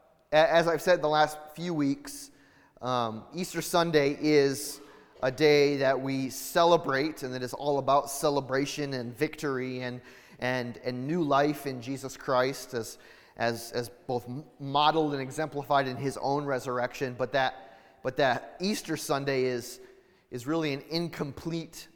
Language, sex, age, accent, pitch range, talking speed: English, male, 30-49, American, 125-150 Hz, 150 wpm